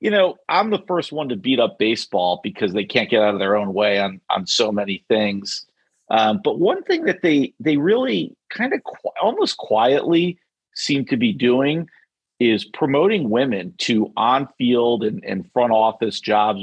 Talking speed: 185 wpm